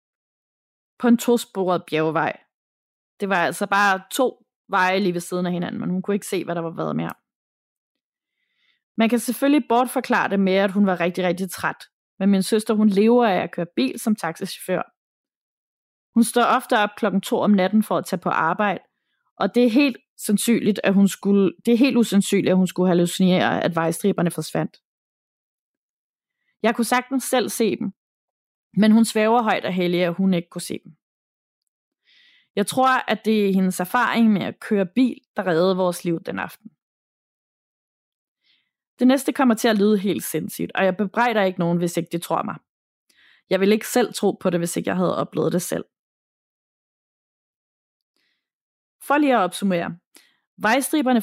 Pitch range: 185-235 Hz